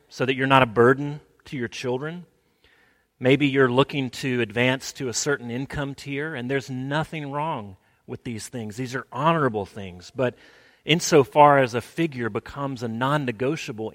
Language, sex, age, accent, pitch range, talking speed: English, male, 40-59, American, 115-135 Hz, 165 wpm